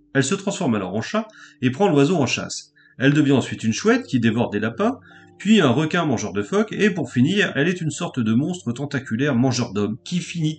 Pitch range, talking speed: 110-160 Hz, 225 wpm